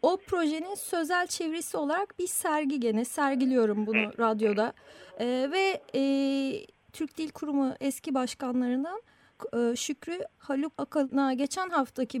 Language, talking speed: Turkish, 125 wpm